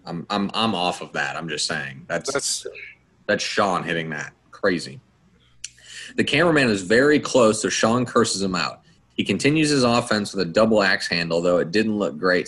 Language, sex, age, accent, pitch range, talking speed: English, male, 30-49, American, 90-120 Hz, 190 wpm